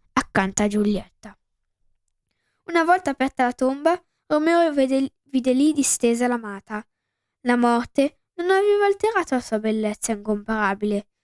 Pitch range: 215-295 Hz